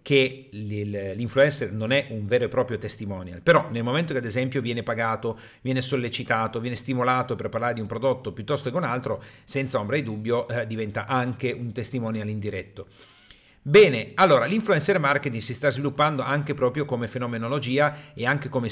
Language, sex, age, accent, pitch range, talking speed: Italian, male, 40-59, native, 115-145 Hz, 175 wpm